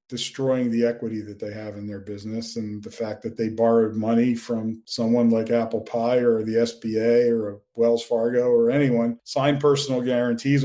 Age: 40-59